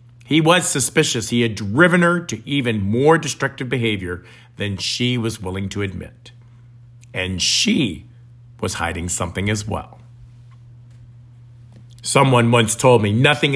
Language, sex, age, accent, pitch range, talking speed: English, male, 50-69, American, 115-135 Hz, 135 wpm